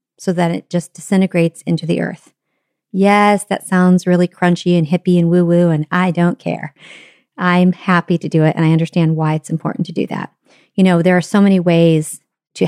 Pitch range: 165-195 Hz